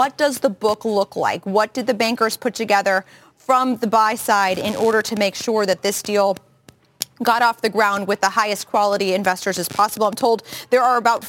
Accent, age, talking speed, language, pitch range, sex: American, 30-49, 215 wpm, English, 200-250 Hz, female